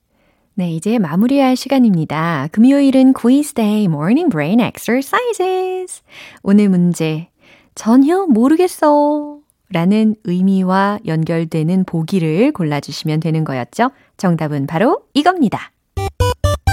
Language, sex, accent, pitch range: Korean, female, native, 165-255 Hz